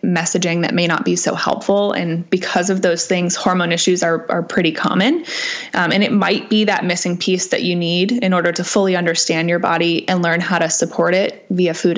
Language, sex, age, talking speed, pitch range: English, female, 20-39, 220 wpm, 175-215 Hz